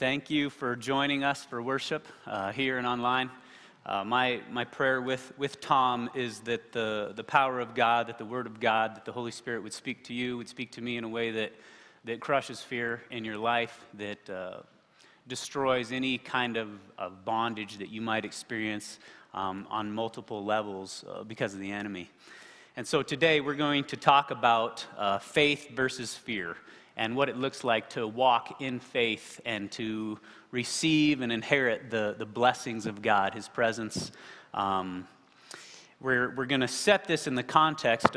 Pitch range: 115-135 Hz